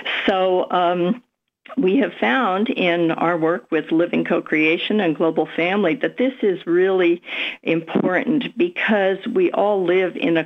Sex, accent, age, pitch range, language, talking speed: female, American, 50-69, 170-235 Hz, English, 145 wpm